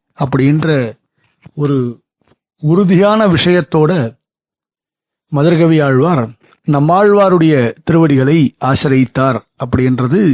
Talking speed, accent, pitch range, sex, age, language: 60 wpm, native, 140-195 Hz, male, 50-69, Tamil